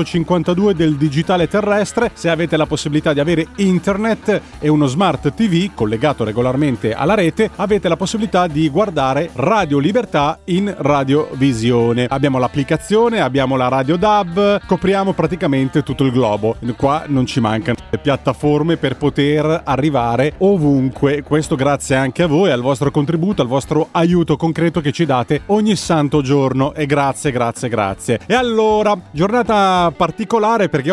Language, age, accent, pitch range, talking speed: Italian, 30-49, native, 135-175 Hz, 150 wpm